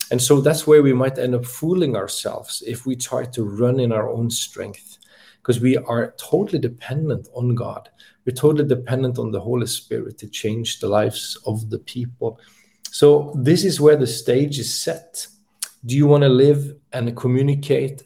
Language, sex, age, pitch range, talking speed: English, male, 40-59, 120-140 Hz, 185 wpm